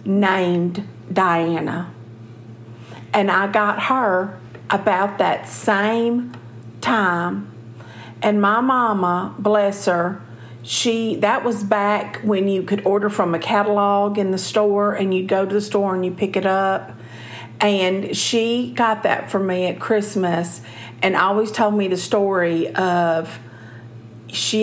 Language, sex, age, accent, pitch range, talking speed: English, female, 50-69, American, 165-235 Hz, 135 wpm